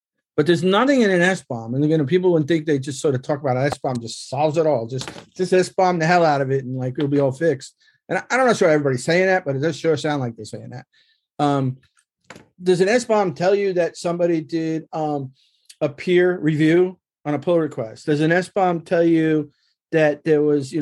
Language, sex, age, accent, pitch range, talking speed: English, male, 40-59, American, 135-170 Hz, 240 wpm